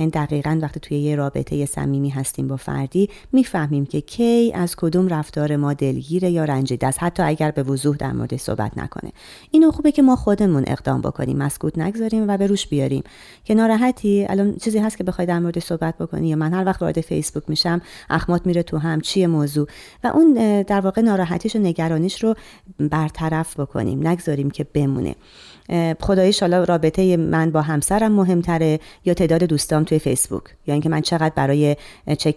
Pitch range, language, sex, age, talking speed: 150-195 Hz, Persian, female, 30-49, 180 wpm